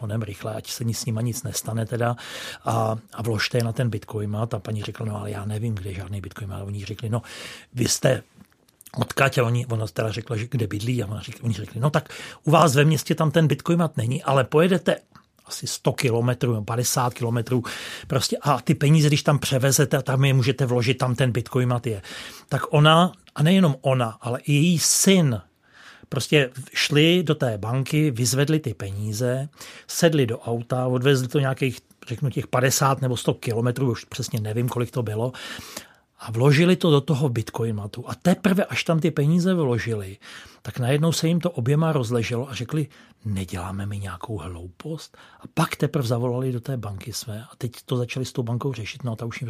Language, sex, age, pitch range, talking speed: Czech, male, 40-59, 115-145 Hz, 200 wpm